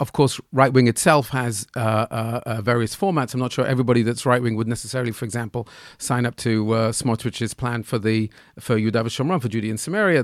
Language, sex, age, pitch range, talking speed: English, male, 40-59, 115-140 Hz, 205 wpm